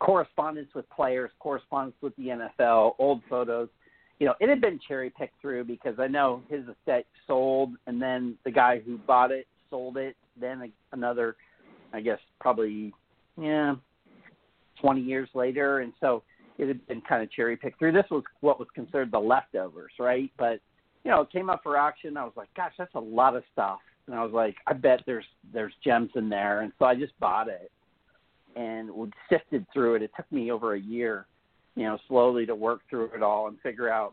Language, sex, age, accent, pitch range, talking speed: English, male, 50-69, American, 115-145 Hz, 200 wpm